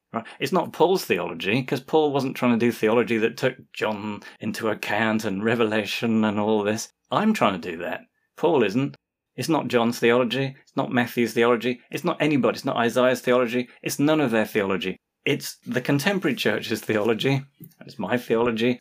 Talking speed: 180 wpm